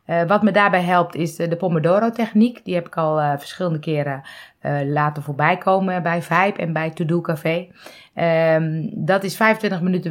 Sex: female